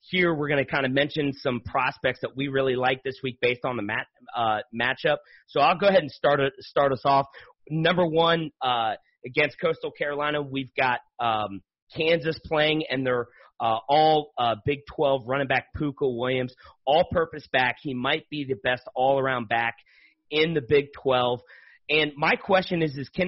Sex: male